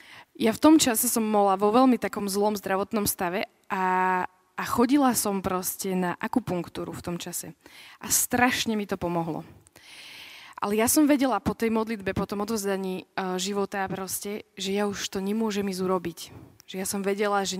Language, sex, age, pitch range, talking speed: Slovak, female, 20-39, 190-225 Hz, 170 wpm